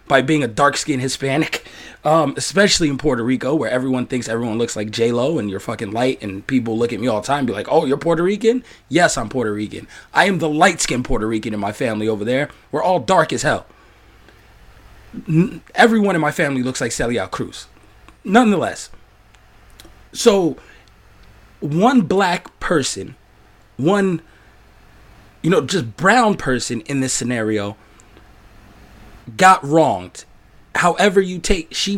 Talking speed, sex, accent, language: 160 wpm, male, American, English